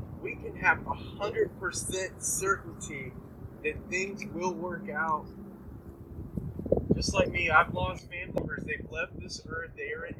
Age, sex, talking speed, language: 20-39, male, 140 wpm, English